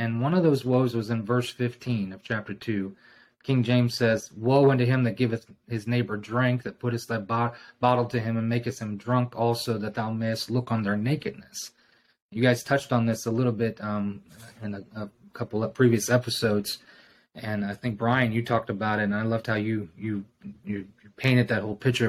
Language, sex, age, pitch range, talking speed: English, male, 30-49, 110-130 Hz, 210 wpm